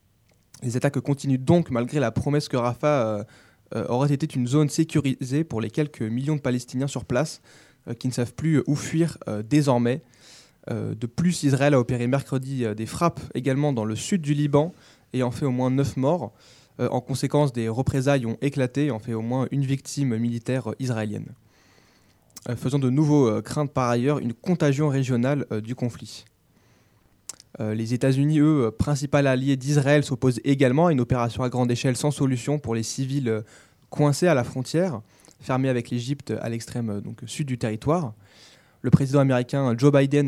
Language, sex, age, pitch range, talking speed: French, male, 20-39, 120-140 Hz, 180 wpm